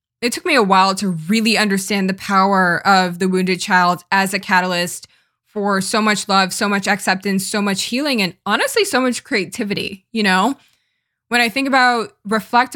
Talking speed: 185 wpm